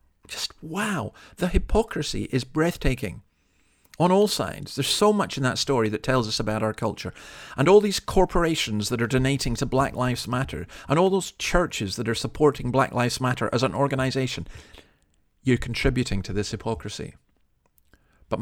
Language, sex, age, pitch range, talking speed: English, male, 40-59, 110-145 Hz, 165 wpm